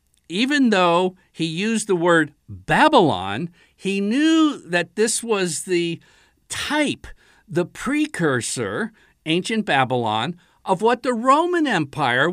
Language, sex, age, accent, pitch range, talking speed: English, male, 50-69, American, 140-220 Hz, 110 wpm